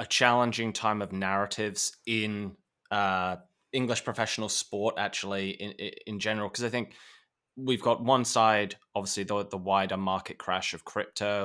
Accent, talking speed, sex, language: British, 150 wpm, male, English